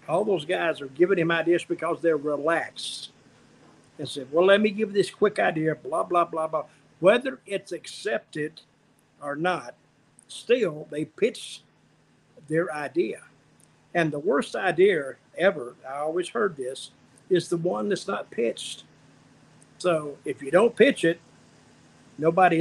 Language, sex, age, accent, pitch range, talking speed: English, male, 50-69, American, 155-190 Hz, 145 wpm